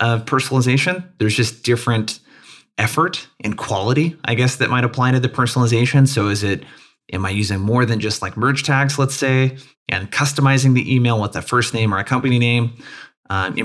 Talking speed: 190 wpm